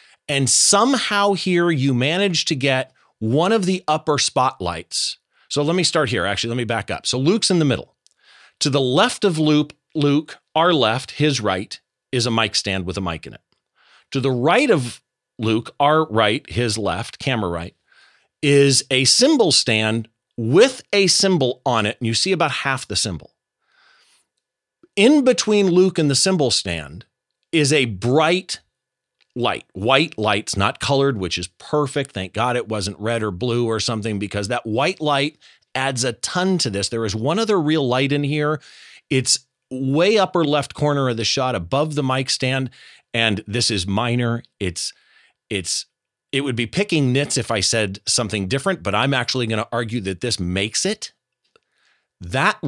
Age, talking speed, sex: 40-59, 180 wpm, male